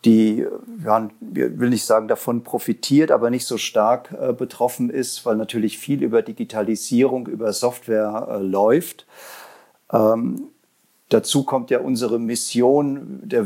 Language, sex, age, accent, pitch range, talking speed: German, male, 40-59, German, 110-130 Hz, 125 wpm